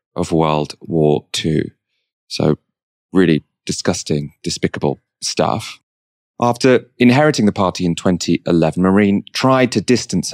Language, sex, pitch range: English, male, 85-115 Hz